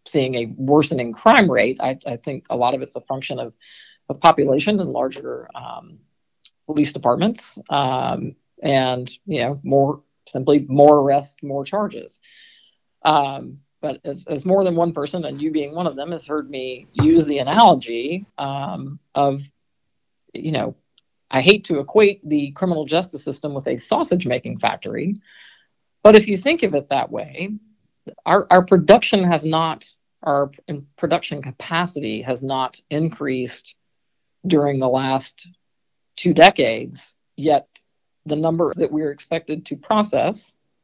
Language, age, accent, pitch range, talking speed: English, 50-69, American, 140-170 Hz, 150 wpm